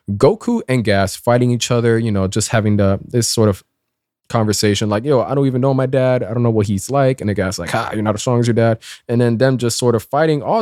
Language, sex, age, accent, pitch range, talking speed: English, male, 20-39, American, 105-130 Hz, 275 wpm